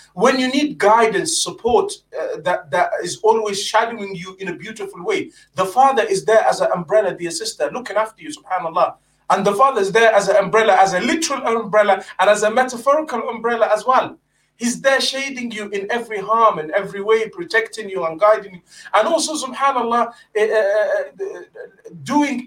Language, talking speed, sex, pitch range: English, 180 wpm, male, 195-255 Hz